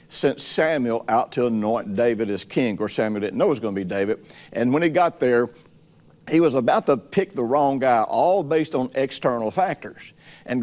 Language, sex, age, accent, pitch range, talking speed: English, male, 60-79, American, 110-135 Hz, 215 wpm